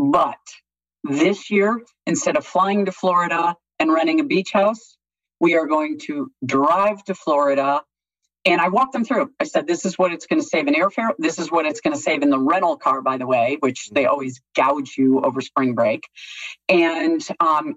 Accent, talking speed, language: American, 205 wpm, English